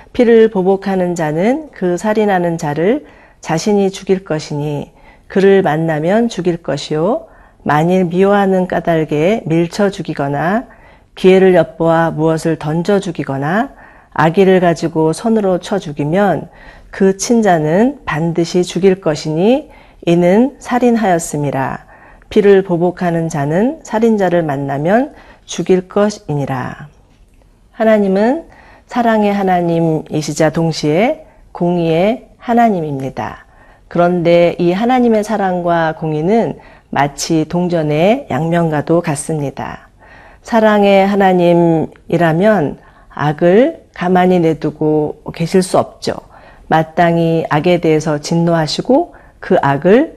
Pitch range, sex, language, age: 160-205 Hz, female, Korean, 40-59